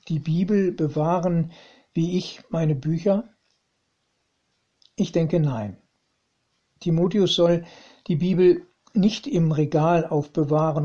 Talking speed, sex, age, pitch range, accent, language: 100 wpm, male, 60-79, 155-185 Hz, German, German